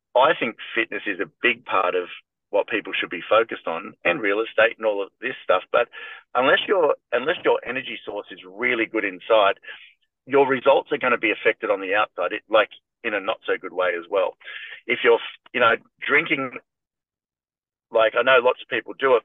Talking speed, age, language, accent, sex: 205 wpm, 40-59, English, Australian, male